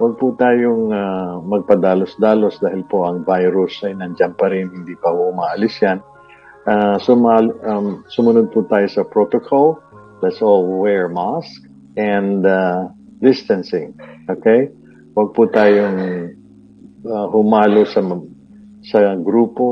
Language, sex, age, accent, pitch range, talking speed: Filipino, male, 50-69, native, 90-110 Hz, 125 wpm